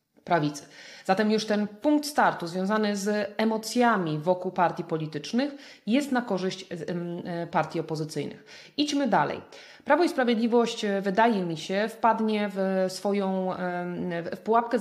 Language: Polish